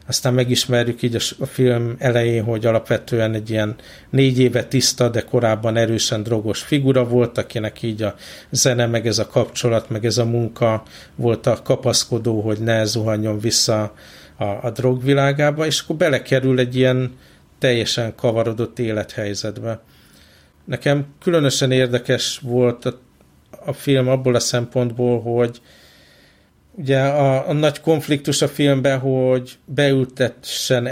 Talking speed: 135 wpm